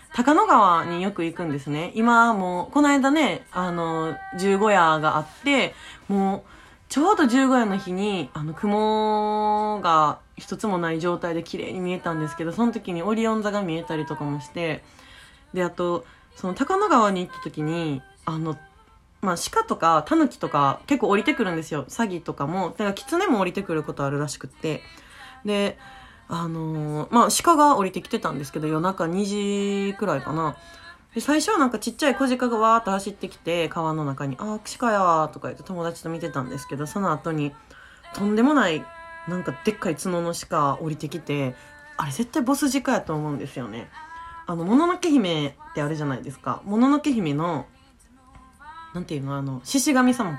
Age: 20-39